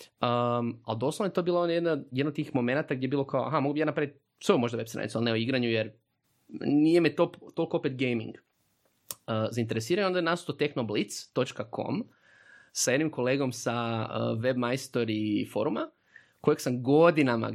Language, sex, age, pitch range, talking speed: Croatian, male, 20-39, 115-145 Hz, 160 wpm